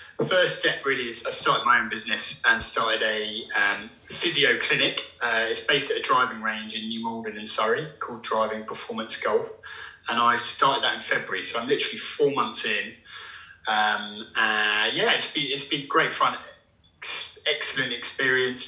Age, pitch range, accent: 20-39, 110-145 Hz, British